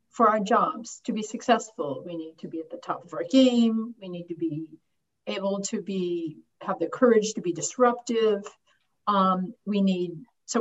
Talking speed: 185 wpm